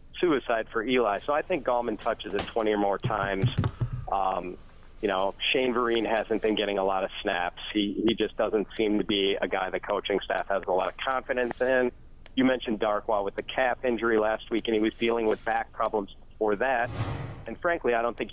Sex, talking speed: male, 215 wpm